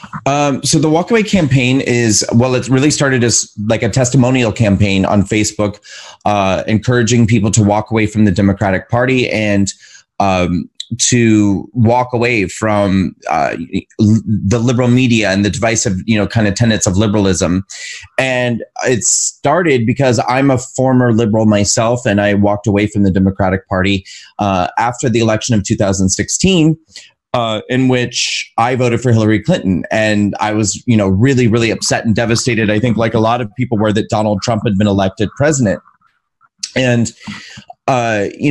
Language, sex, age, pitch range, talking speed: English, male, 30-49, 105-125 Hz, 165 wpm